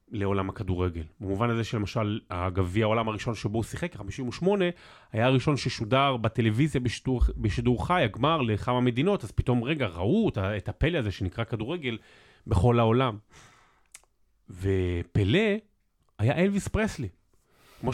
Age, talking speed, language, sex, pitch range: 30-49, 125 wpm, Hebrew, male, 100-135 Hz